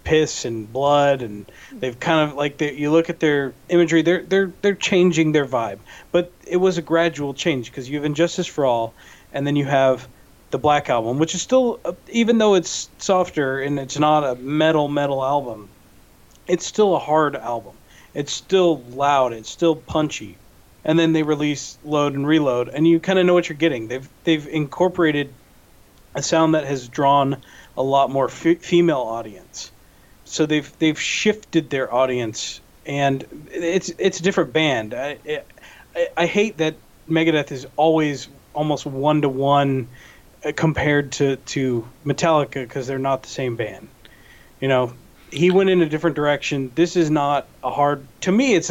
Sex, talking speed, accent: male, 170 wpm, American